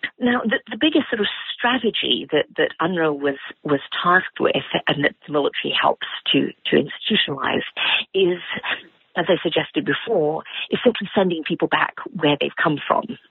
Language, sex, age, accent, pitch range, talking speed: English, female, 50-69, British, 155-225 Hz, 160 wpm